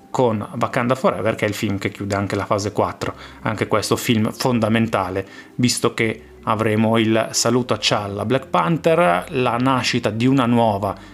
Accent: native